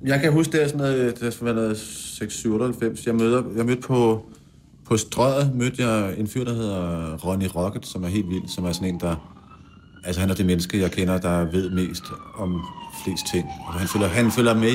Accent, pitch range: native, 90-115 Hz